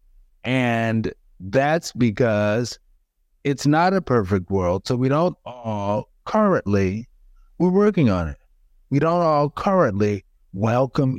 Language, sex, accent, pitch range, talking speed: English, male, American, 90-140 Hz, 120 wpm